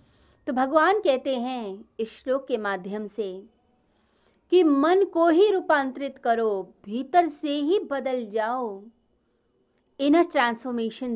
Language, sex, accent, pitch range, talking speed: Hindi, female, native, 205-280 Hz, 120 wpm